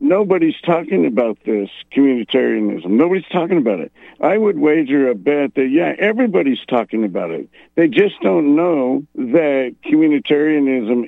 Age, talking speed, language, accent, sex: 60-79, 140 wpm, English, American, male